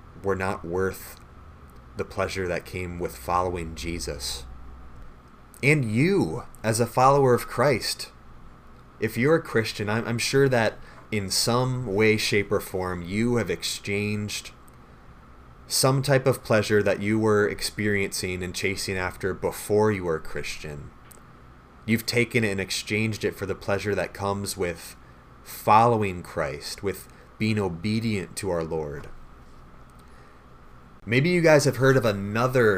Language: English